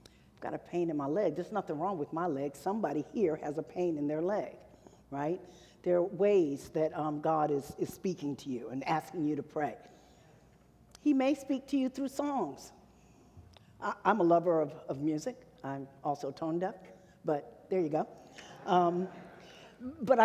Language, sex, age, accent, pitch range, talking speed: English, female, 50-69, American, 160-225 Hz, 180 wpm